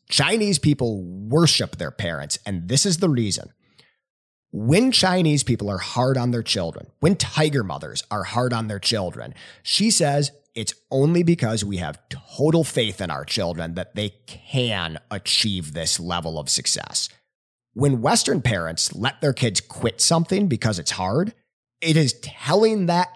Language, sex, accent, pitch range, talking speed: English, male, American, 100-155 Hz, 160 wpm